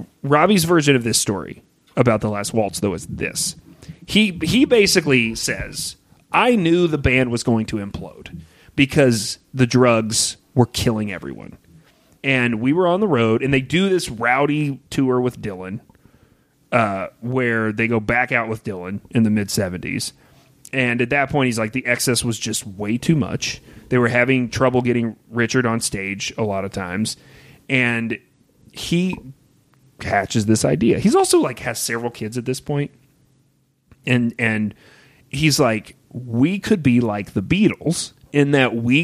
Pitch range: 115-140 Hz